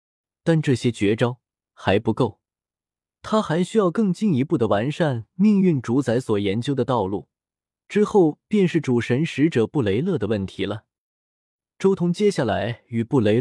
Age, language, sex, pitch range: 20-39, Chinese, male, 110-165 Hz